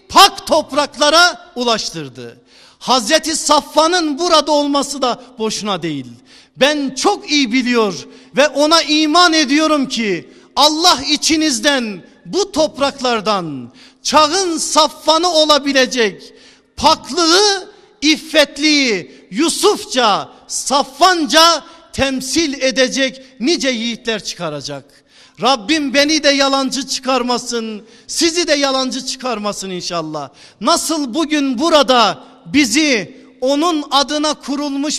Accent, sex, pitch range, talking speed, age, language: native, male, 255-310 Hz, 90 wpm, 50-69, Turkish